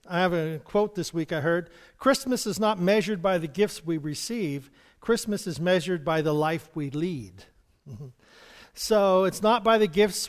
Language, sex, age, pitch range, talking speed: English, male, 50-69, 170-215 Hz, 180 wpm